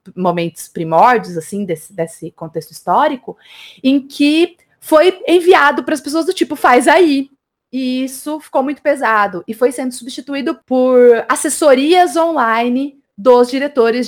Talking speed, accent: 135 wpm, Brazilian